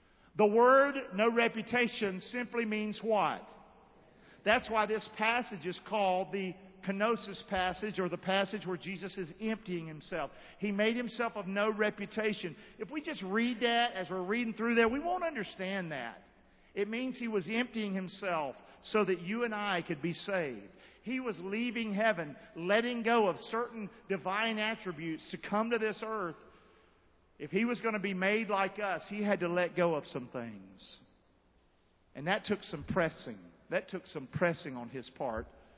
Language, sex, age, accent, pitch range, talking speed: English, male, 50-69, American, 185-235 Hz, 170 wpm